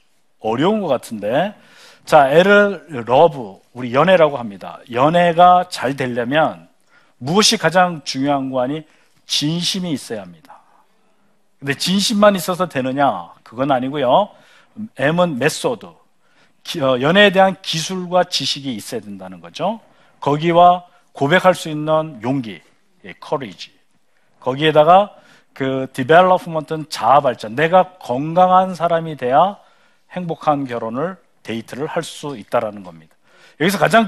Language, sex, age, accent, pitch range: Korean, male, 50-69, native, 135-185 Hz